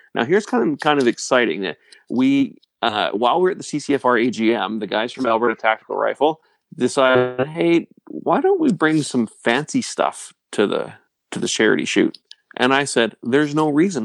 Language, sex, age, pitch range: English, male, 30-49, 115-145 Hz